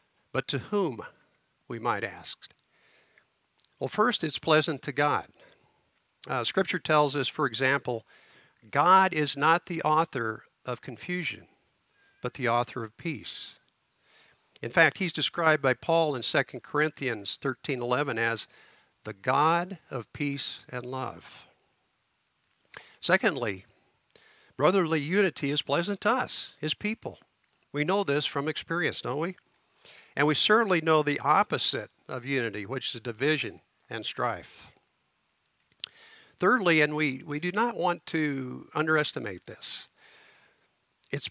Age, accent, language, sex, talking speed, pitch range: 50-69, American, English, male, 125 wpm, 125-165 Hz